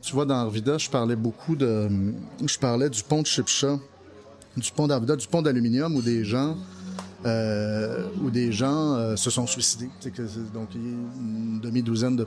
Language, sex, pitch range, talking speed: French, male, 115-140 Hz, 175 wpm